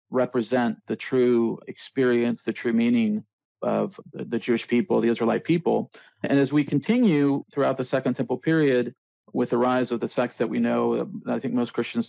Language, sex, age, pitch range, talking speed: English, male, 40-59, 120-145 Hz, 180 wpm